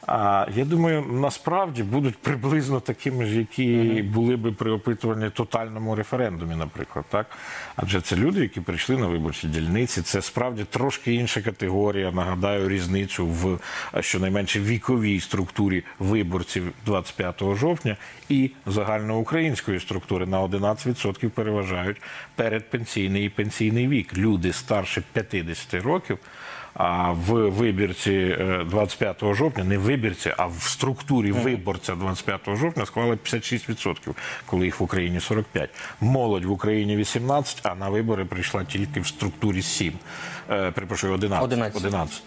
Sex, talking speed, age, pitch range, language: male, 125 wpm, 50-69, 95-120 Hz, Ukrainian